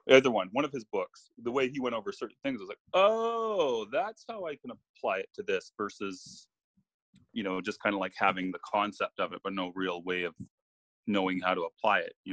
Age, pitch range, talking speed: 30-49, 95-120 Hz, 230 wpm